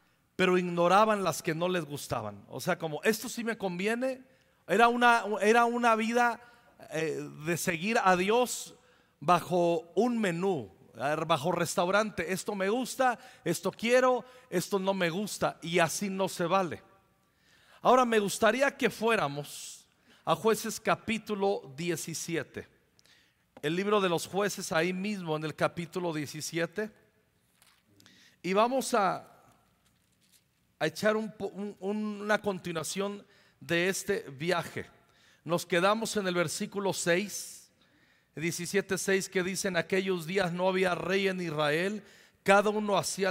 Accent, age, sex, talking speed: Mexican, 40-59, male, 130 wpm